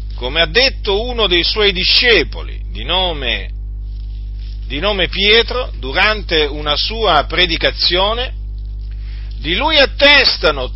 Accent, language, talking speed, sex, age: native, Italian, 100 wpm, male, 50-69